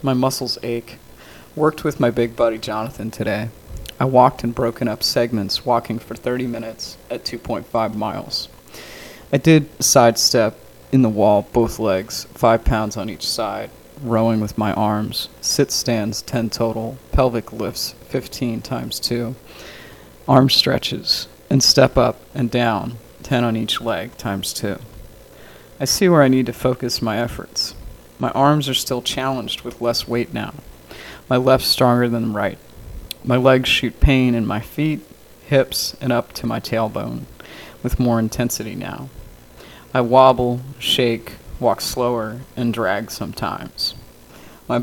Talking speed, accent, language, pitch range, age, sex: 150 wpm, American, English, 110-130 Hz, 20-39, male